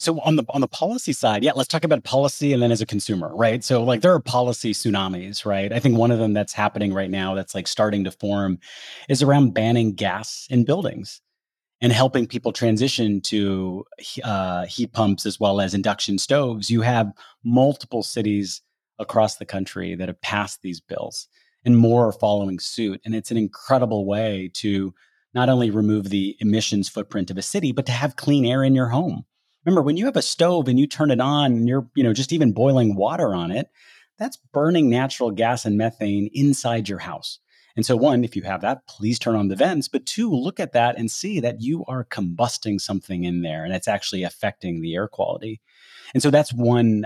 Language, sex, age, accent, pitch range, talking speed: English, male, 30-49, American, 100-130 Hz, 210 wpm